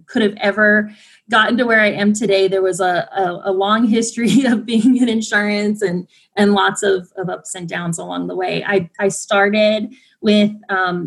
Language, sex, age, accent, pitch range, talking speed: English, female, 20-39, American, 195-230 Hz, 195 wpm